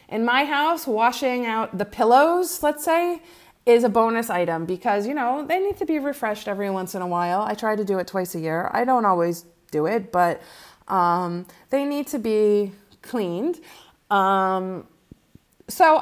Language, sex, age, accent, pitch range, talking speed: English, female, 30-49, American, 195-280 Hz, 180 wpm